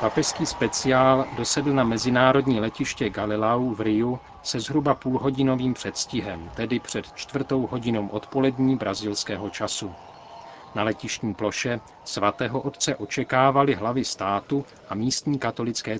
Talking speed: 115 wpm